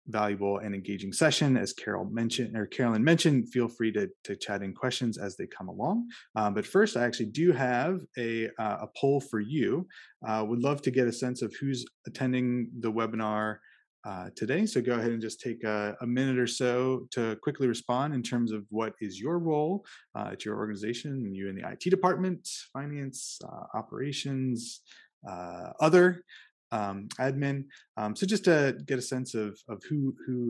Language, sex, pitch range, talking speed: English, male, 110-145 Hz, 195 wpm